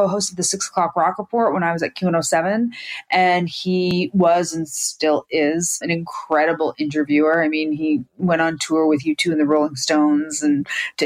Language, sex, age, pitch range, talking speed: English, female, 30-49, 160-200 Hz, 210 wpm